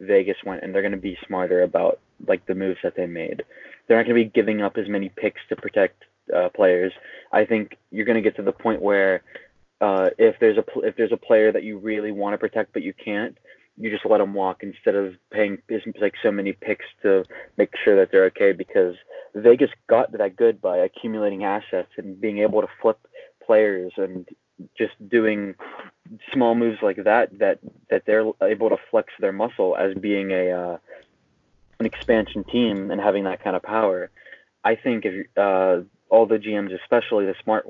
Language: English